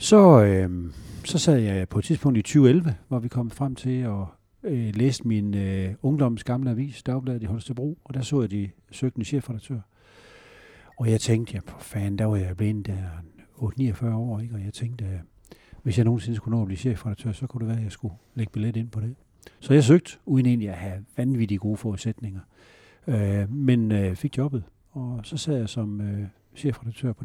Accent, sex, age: native, male, 60-79